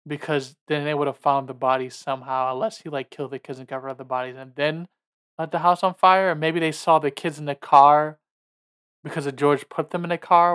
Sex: male